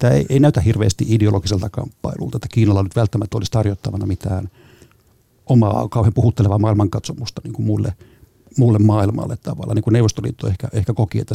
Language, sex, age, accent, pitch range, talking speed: Finnish, male, 60-79, native, 105-125 Hz, 130 wpm